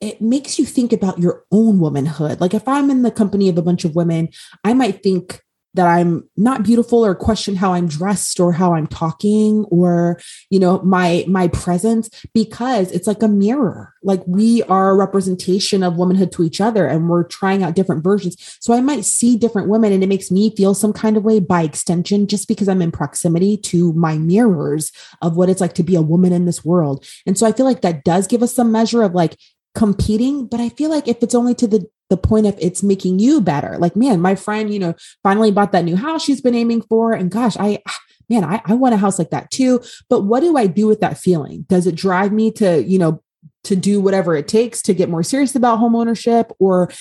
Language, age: English, 30-49